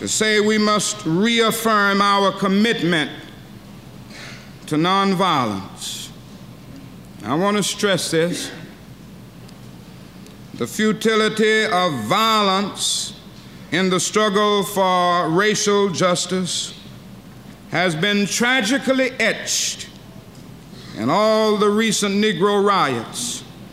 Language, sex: English, male